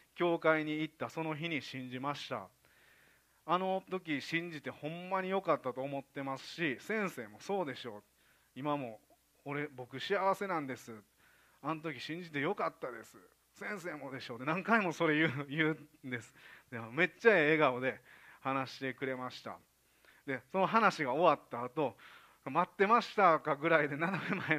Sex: male